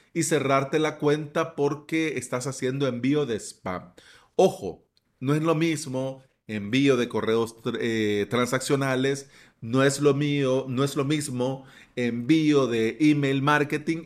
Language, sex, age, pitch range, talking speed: Spanish, male, 40-59, 120-160 Hz, 135 wpm